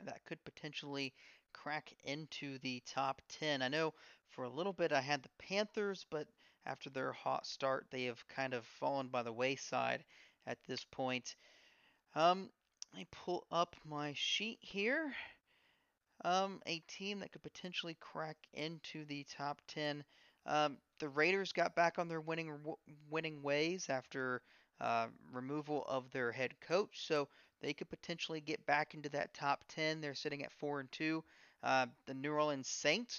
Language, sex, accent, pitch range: English, male, American, 140-170 Hz